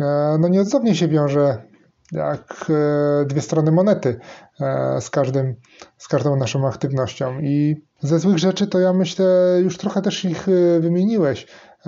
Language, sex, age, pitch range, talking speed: Polish, male, 20-39, 135-165 Hz, 125 wpm